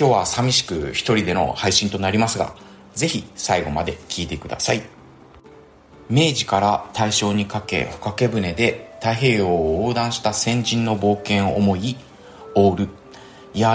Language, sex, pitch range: Japanese, male, 95-120 Hz